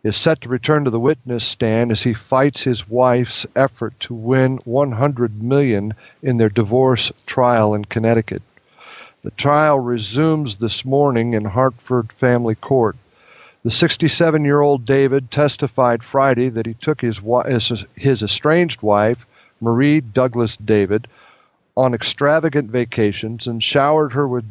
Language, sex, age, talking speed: English, male, 50-69, 135 wpm